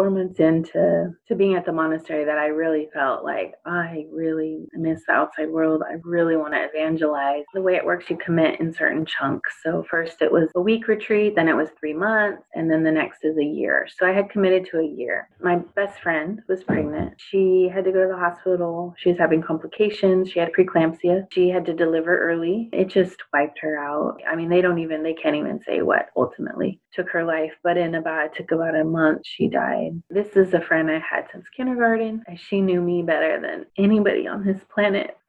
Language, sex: English, female